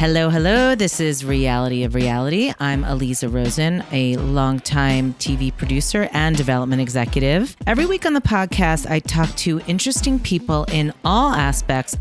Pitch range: 130-155 Hz